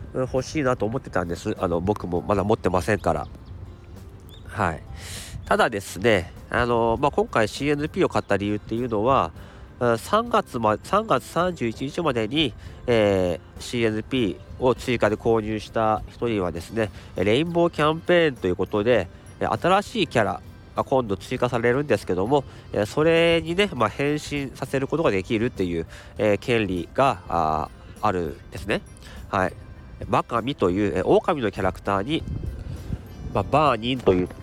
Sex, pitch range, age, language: male, 95-130 Hz, 40-59, Japanese